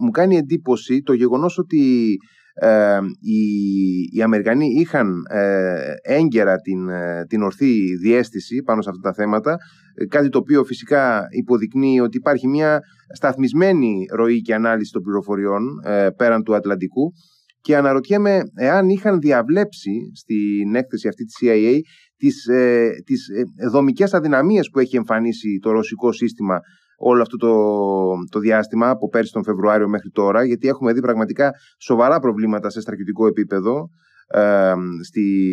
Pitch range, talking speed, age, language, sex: 105-150 Hz, 140 wpm, 30-49, Greek, male